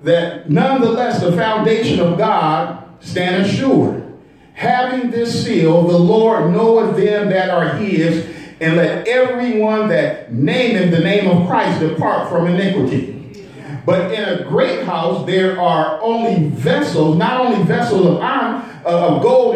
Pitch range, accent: 175-230 Hz, American